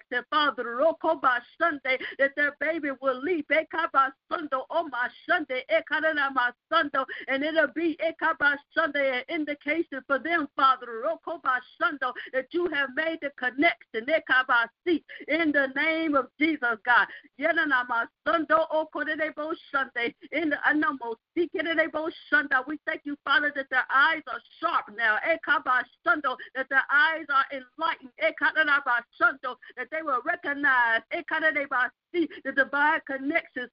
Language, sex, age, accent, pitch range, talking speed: English, female, 50-69, American, 265-325 Hz, 105 wpm